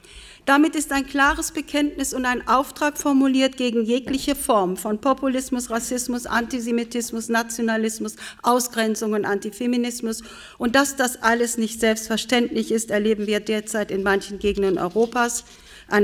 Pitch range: 205-255 Hz